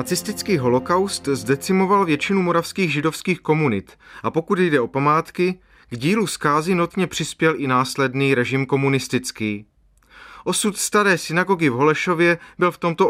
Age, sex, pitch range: 30-49, male, 135-185 Hz